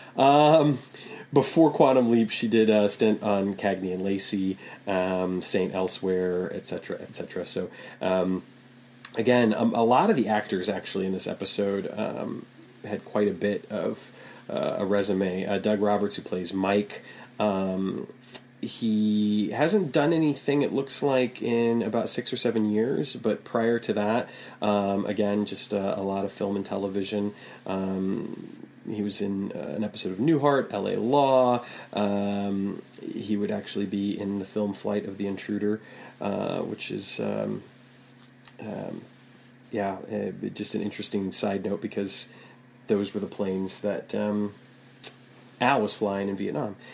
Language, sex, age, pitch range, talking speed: English, male, 30-49, 100-125 Hz, 155 wpm